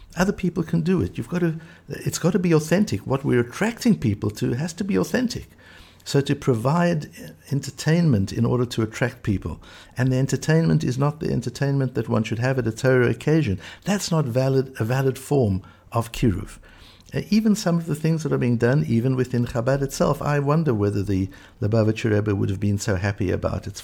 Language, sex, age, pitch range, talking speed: English, male, 60-79, 100-130 Hz, 200 wpm